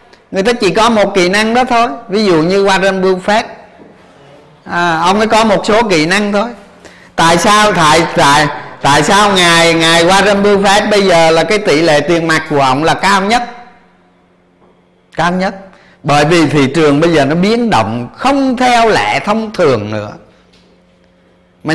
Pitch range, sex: 140-200 Hz, male